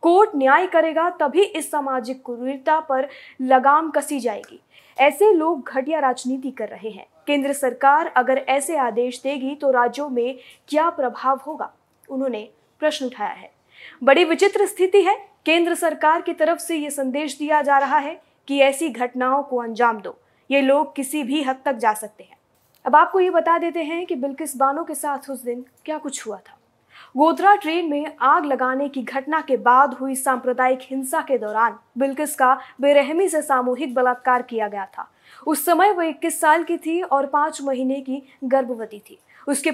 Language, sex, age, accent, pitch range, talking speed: Hindi, female, 20-39, native, 260-315 Hz, 180 wpm